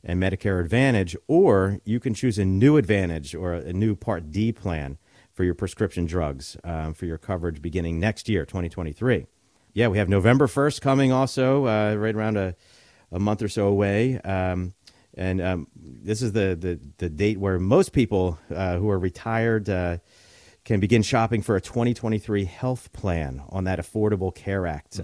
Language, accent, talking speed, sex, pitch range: English, American, 175 wpm, male, 90-115 Hz